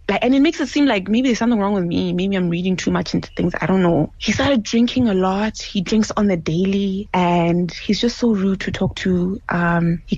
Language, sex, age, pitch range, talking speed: English, female, 20-39, 180-225 Hz, 250 wpm